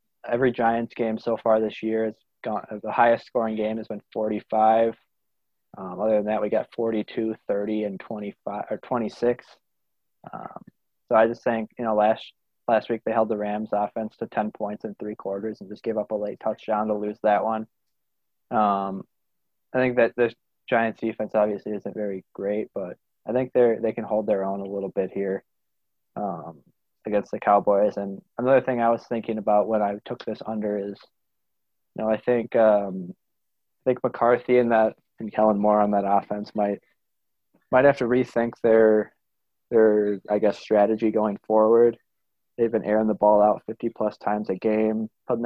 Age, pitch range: 20-39, 105-115 Hz